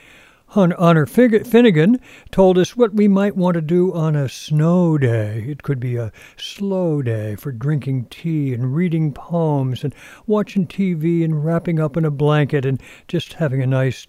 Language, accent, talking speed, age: English, American, 170 wpm, 60-79